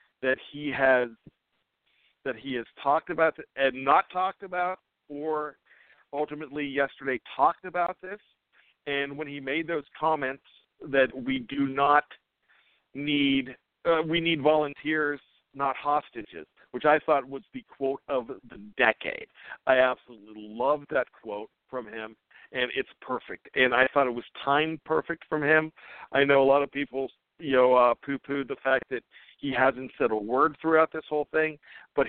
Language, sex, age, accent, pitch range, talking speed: English, male, 50-69, American, 130-155 Hz, 165 wpm